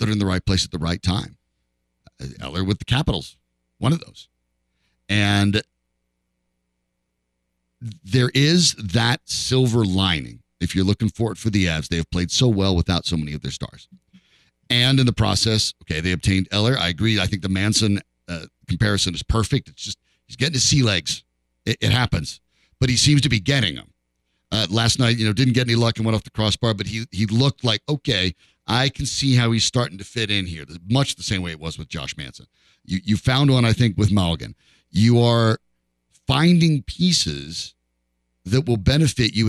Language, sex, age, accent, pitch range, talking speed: English, male, 50-69, American, 85-130 Hz, 200 wpm